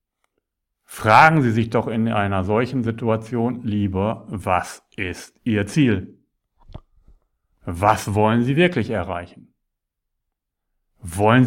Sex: male